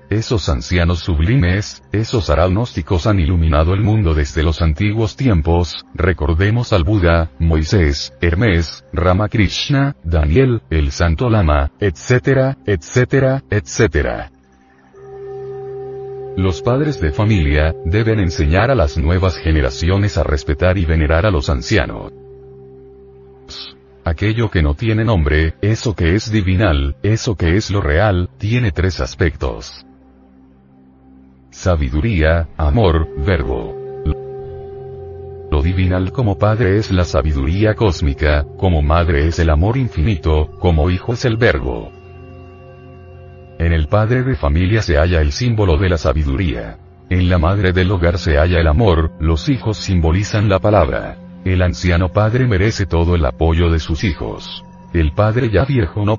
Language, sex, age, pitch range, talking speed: Spanish, male, 40-59, 80-110 Hz, 130 wpm